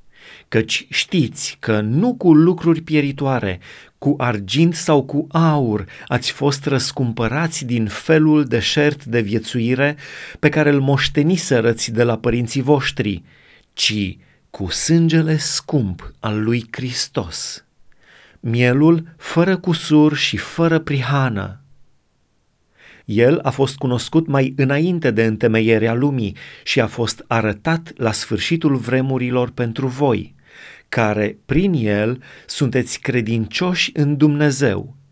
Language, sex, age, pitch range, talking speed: Romanian, male, 30-49, 115-150 Hz, 115 wpm